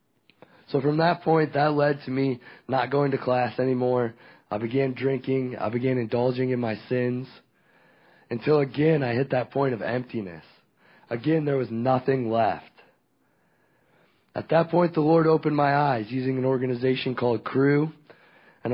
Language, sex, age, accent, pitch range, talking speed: English, male, 30-49, American, 120-145 Hz, 155 wpm